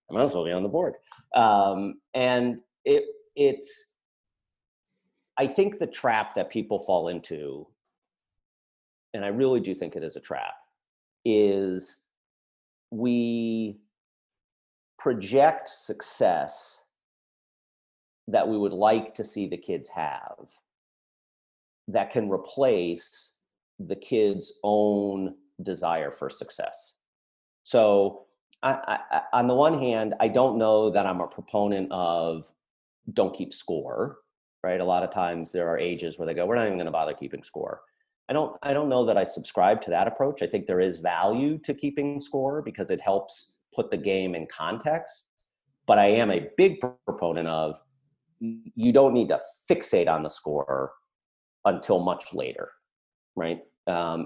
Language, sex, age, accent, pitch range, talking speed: English, male, 40-59, American, 90-135 Hz, 150 wpm